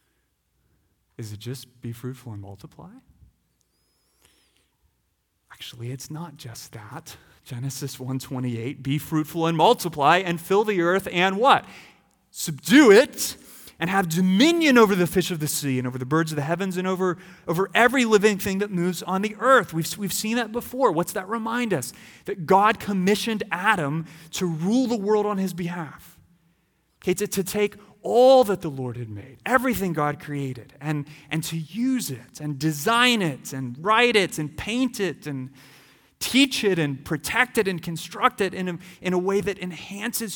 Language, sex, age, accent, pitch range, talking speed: English, male, 30-49, American, 150-220 Hz, 170 wpm